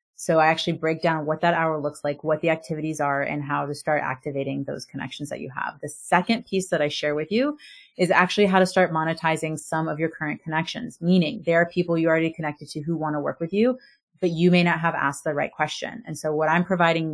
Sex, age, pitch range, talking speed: female, 30-49, 150-180 Hz, 250 wpm